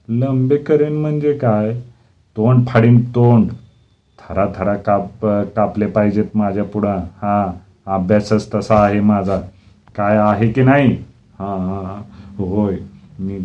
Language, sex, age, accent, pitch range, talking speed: Marathi, male, 40-59, native, 95-115 Hz, 110 wpm